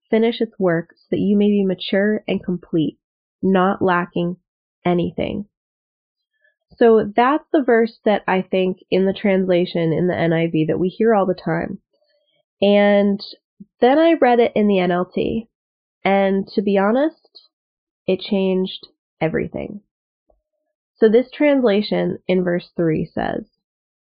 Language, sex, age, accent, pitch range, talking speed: English, female, 20-39, American, 180-235 Hz, 135 wpm